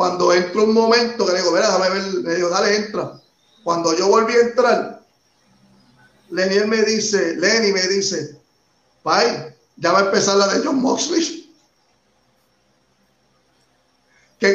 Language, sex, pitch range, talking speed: English, male, 165-230 Hz, 130 wpm